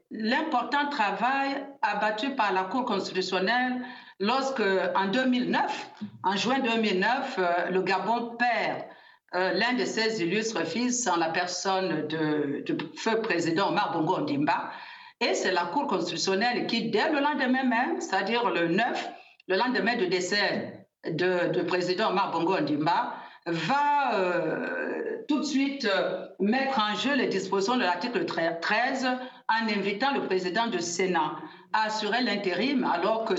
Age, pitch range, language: 50-69, 185-265 Hz, French